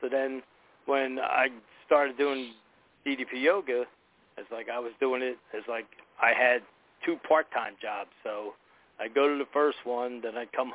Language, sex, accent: English, male, American